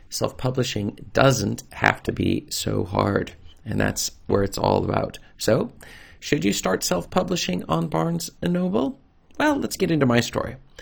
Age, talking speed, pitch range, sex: 40-59, 150 wpm, 95-115 Hz, male